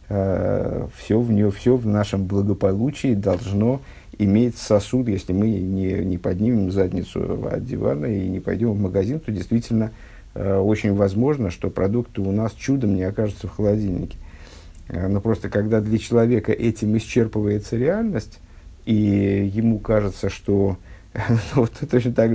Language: Russian